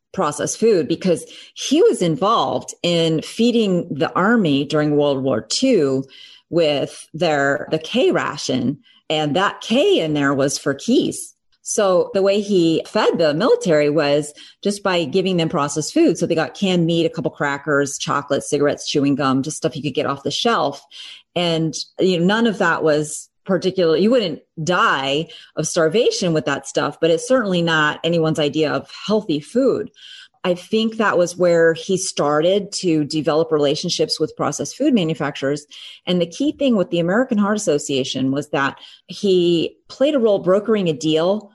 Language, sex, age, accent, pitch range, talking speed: English, female, 30-49, American, 150-200 Hz, 170 wpm